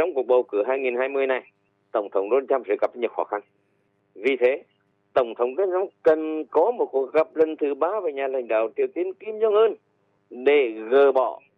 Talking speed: 200 wpm